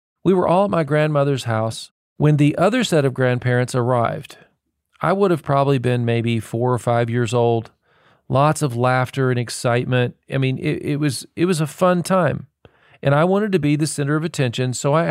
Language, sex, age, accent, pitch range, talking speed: English, male, 40-59, American, 120-150 Hz, 205 wpm